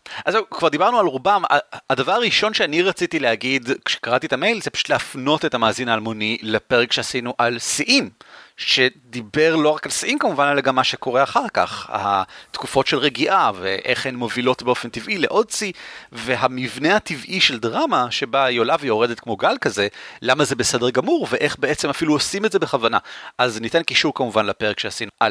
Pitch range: 115-160 Hz